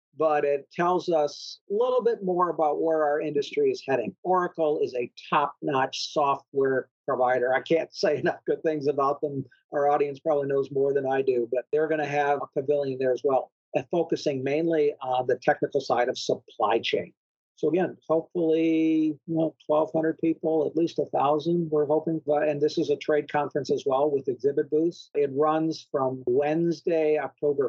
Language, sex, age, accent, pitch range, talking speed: English, male, 50-69, American, 145-165 Hz, 180 wpm